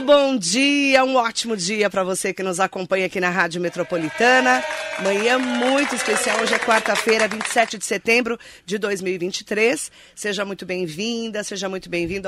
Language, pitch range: Portuguese, 165-215 Hz